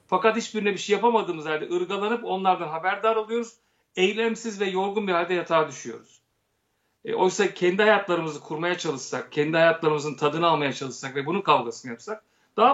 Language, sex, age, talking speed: Turkish, male, 40-59, 155 wpm